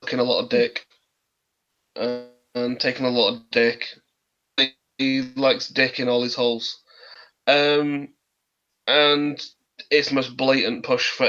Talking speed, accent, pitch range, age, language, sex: 140 wpm, British, 125-150 Hz, 20-39, English, male